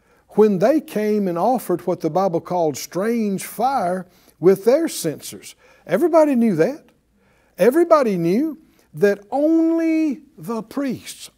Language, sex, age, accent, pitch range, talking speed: English, male, 60-79, American, 180-265 Hz, 120 wpm